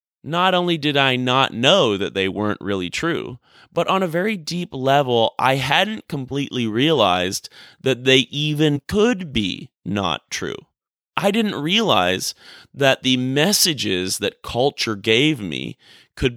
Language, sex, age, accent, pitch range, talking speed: English, male, 30-49, American, 110-150 Hz, 145 wpm